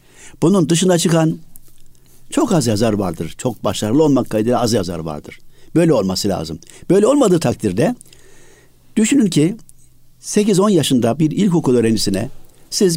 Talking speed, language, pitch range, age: 130 wpm, Turkish, 105-160 Hz, 60-79